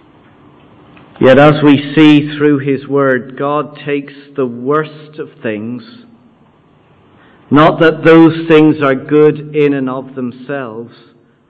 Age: 50-69